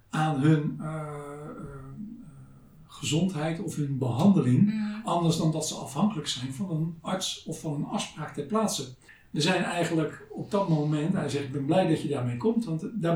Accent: Dutch